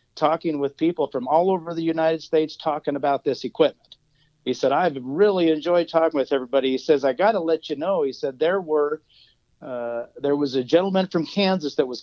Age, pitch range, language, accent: 50-69, 135-165 Hz, English, American